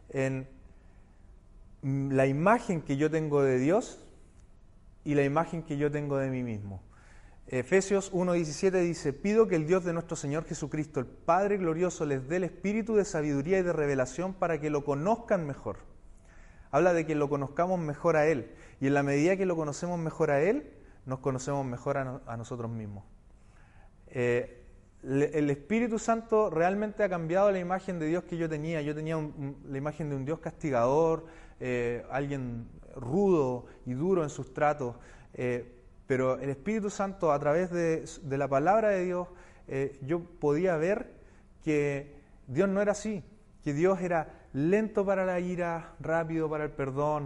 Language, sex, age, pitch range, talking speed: Spanish, male, 30-49, 135-170 Hz, 170 wpm